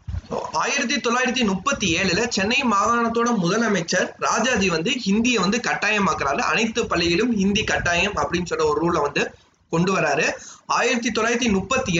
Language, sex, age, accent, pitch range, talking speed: Tamil, male, 20-39, native, 180-245 Hz, 115 wpm